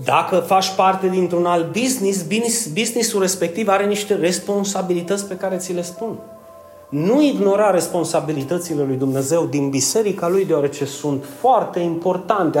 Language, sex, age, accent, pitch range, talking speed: Romanian, male, 30-49, native, 160-200 Hz, 135 wpm